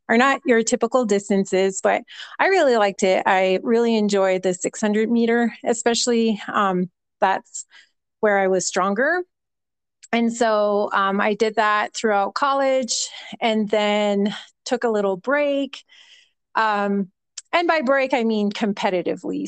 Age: 30-49